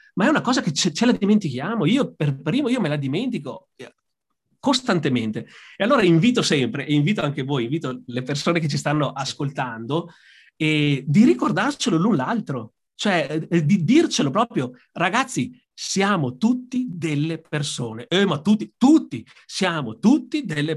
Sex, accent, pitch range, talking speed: male, native, 140-215 Hz, 155 wpm